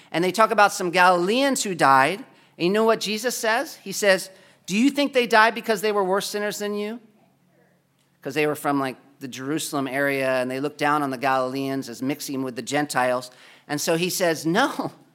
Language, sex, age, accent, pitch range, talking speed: English, male, 40-59, American, 155-225 Hz, 210 wpm